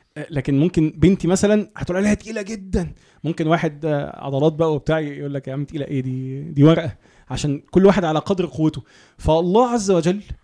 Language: Arabic